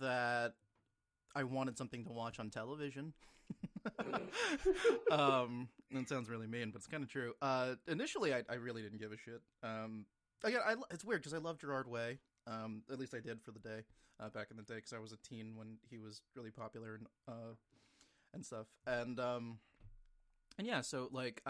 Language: English